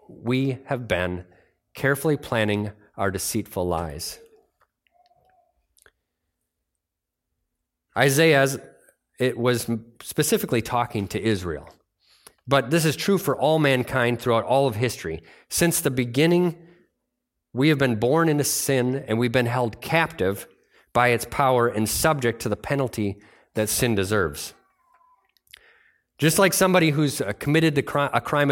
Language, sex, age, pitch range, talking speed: English, male, 30-49, 110-145 Hz, 120 wpm